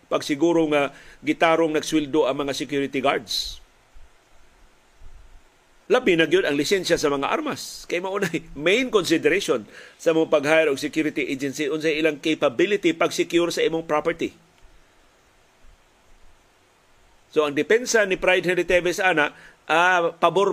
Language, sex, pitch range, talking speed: Filipino, male, 145-175 Hz, 135 wpm